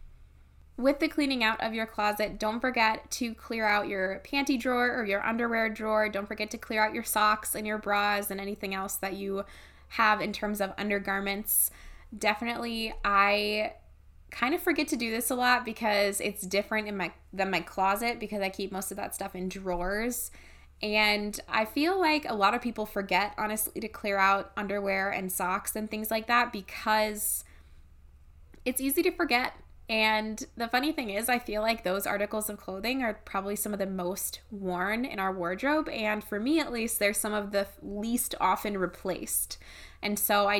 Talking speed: 190 wpm